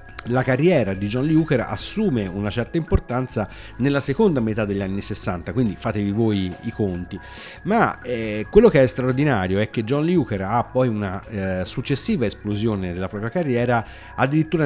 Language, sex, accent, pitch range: Italian, male, native, 100-130 Hz